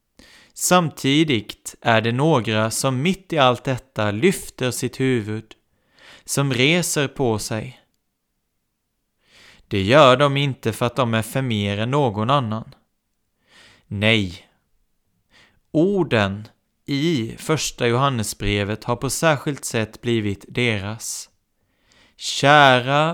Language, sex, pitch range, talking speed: Swedish, male, 105-140 Hz, 105 wpm